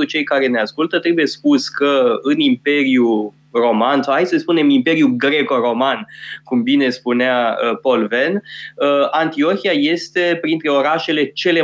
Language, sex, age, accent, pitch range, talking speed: Romanian, male, 20-39, native, 130-170 Hz, 135 wpm